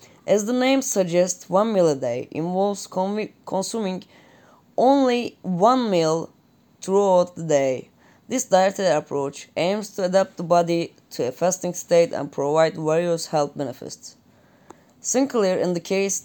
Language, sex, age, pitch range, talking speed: Turkish, female, 20-39, 155-190 Hz, 130 wpm